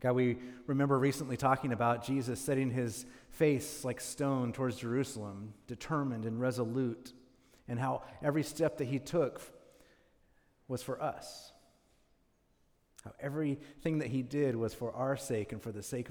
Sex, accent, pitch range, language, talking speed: male, American, 115-135 Hz, English, 150 wpm